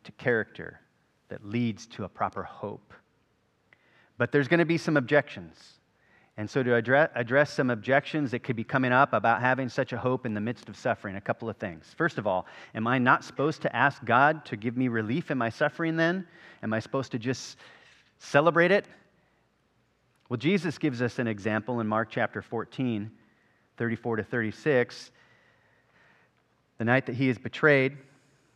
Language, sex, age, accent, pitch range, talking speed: English, male, 40-59, American, 110-140 Hz, 175 wpm